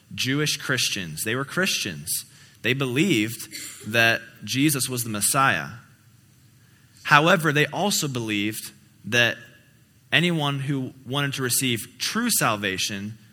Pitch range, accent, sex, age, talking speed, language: 105-135 Hz, American, male, 20-39, 110 wpm, English